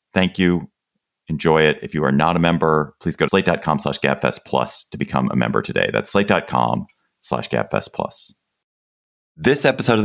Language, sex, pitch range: English, male, 70-105 Hz